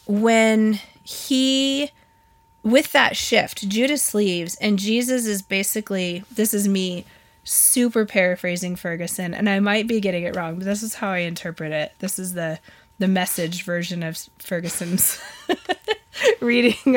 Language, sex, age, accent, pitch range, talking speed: English, female, 20-39, American, 185-230 Hz, 140 wpm